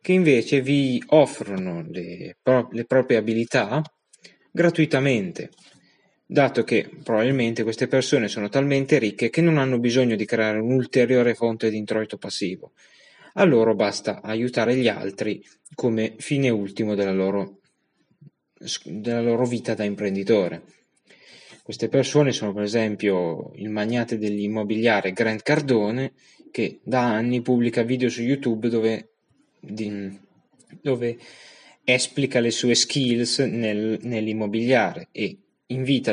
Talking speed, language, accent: 120 wpm, Italian, native